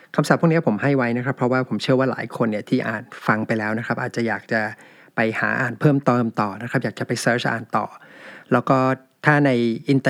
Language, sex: Thai, male